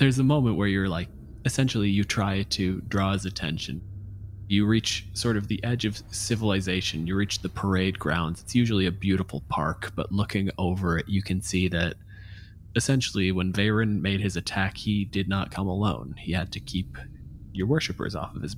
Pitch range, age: 90-110 Hz, 20-39